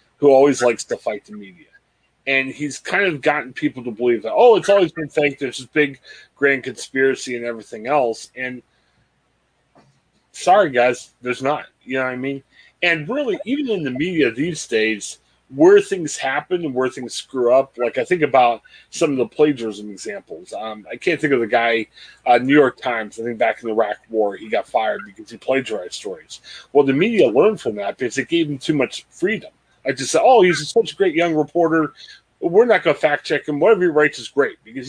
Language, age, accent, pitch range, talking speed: English, 30-49, American, 120-170 Hz, 215 wpm